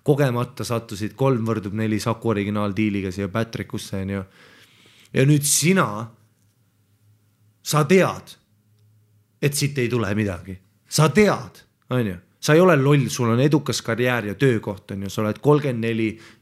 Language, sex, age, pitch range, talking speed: English, male, 30-49, 105-155 Hz, 135 wpm